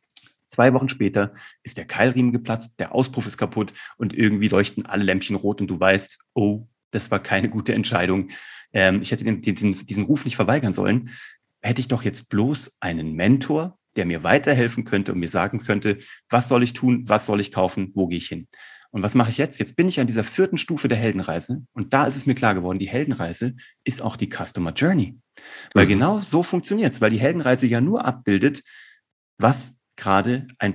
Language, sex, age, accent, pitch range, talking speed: German, male, 30-49, German, 100-135 Hz, 205 wpm